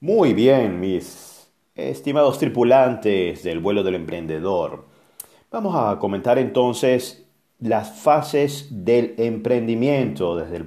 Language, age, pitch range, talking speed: Spanish, 40-59, 100-130 Hz, 105 wpm